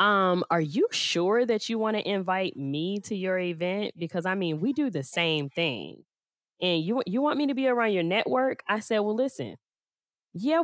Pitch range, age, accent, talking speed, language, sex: 165-225 Hz, 10-29, American, 205 wpm, English, female